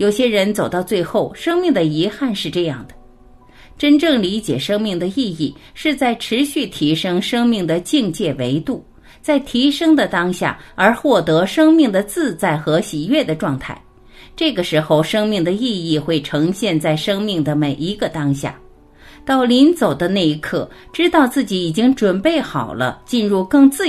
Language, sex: Chinese, female